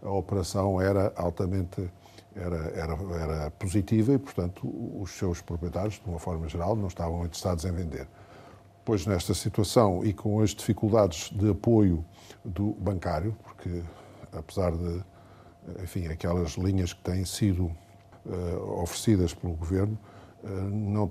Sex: male